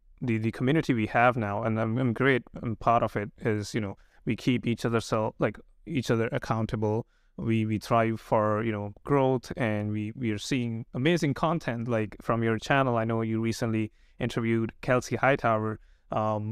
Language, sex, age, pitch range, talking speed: English, male, 30-49, 110-130 Hz, 190 wpm